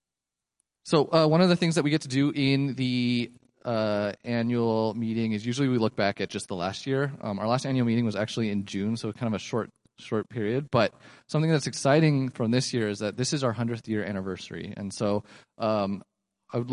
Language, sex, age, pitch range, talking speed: English, male, 30-49, 105-125 Hz, 225 wpm